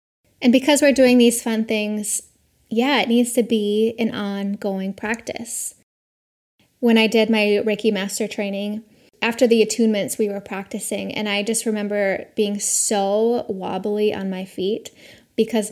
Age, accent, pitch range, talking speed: 10-29, American, 210-240 Hz, 150 wpm